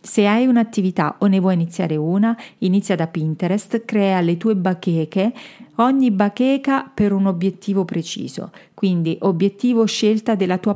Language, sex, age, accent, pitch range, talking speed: Italian, female, 40-59, native, 180-220 Hz, 145 wpm